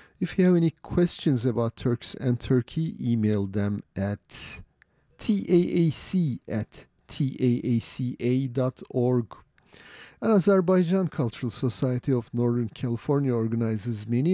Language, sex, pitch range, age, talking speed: English, male, 115-155 Hz, 40-59, 100 wpm